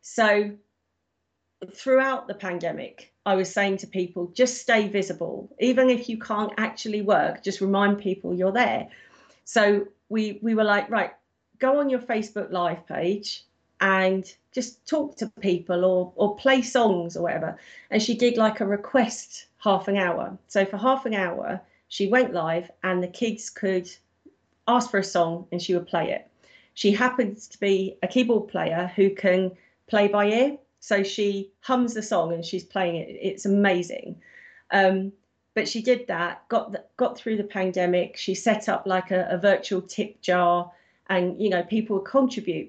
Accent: British